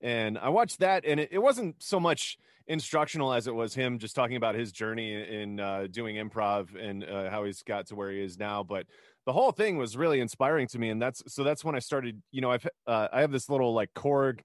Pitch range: 105-140 Hz